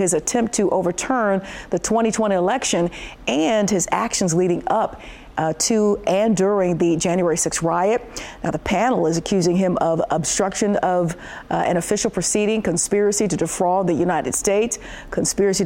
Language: English